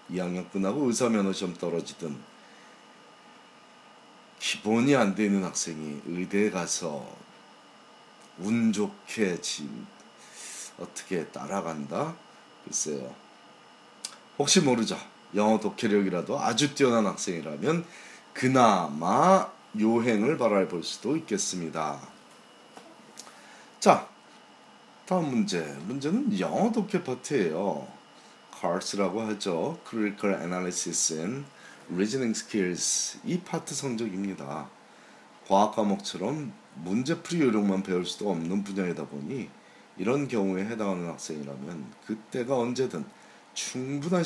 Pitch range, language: 90-130 Hz, Korean